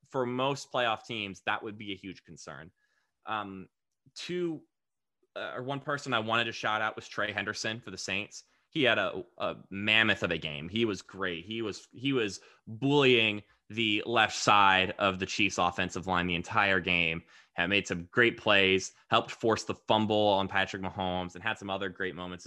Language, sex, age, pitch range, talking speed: English, male, 20-39, 90-110 Hz, 190 wpm